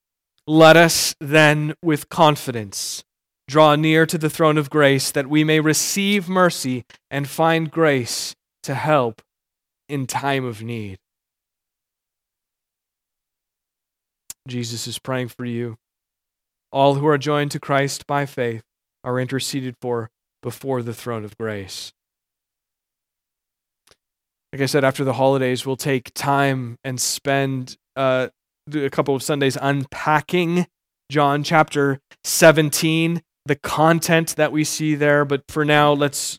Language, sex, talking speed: English, male, 125 wpm